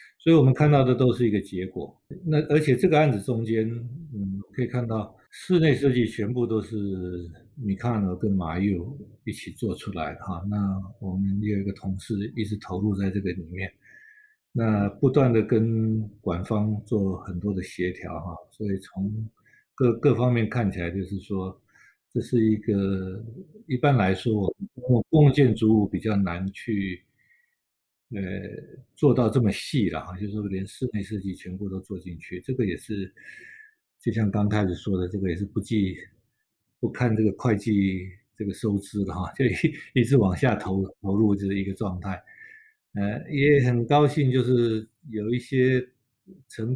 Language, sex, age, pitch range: Chinese, male, 50-69, 95-125 Hz